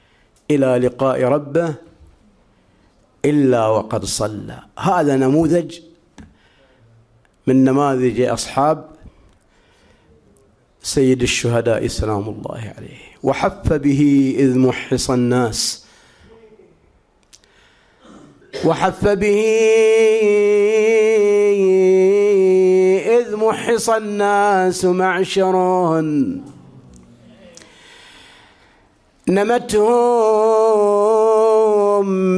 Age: 50-69